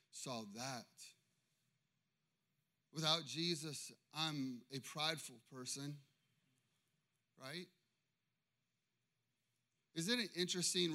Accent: American